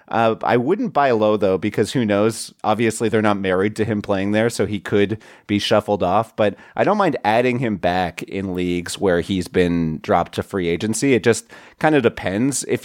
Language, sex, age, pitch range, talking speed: English, male, 30-49, 95-115 Hz, 210 wpm